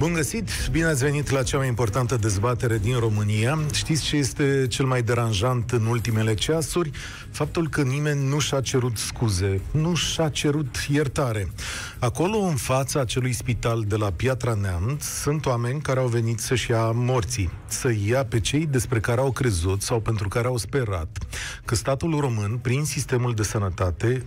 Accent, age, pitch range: native, 40-59, 105-135 Hz